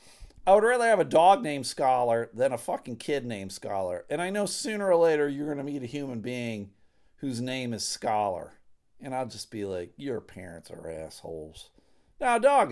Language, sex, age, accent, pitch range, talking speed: English, male, 50-69, American, 130-215 Hz, 205 wpm